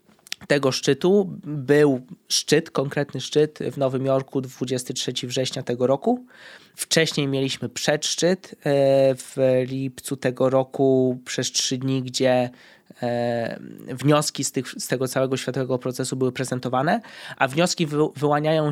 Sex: male